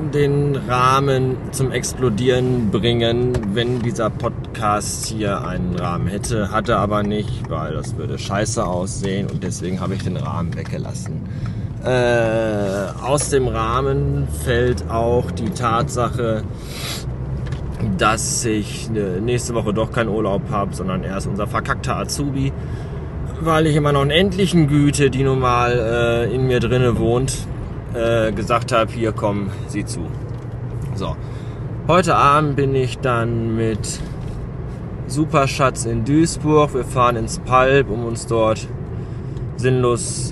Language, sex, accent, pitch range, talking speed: German, male, German, 105-130 Hz, 130 wpm